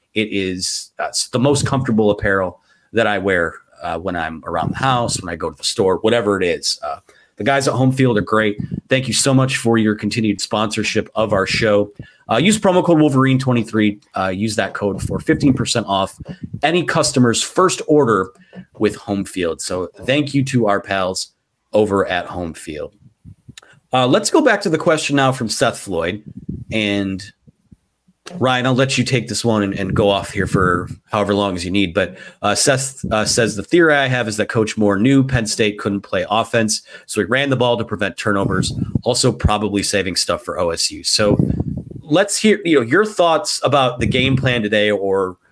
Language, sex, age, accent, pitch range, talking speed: English, male, 30-49, American, 105-130 Hz, 195 wpm